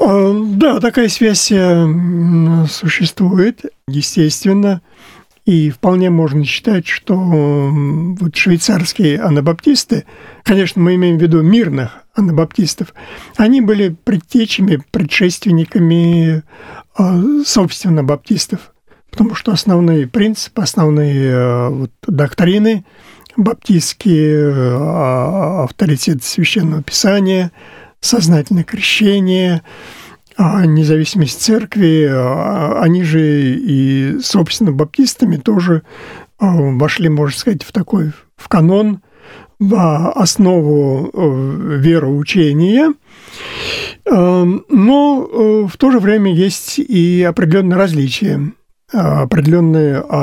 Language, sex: Russian, male